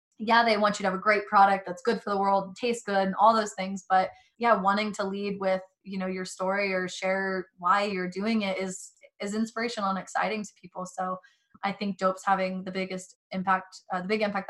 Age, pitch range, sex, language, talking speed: 20-39, 185-210 Hz, female, English, 230 wpm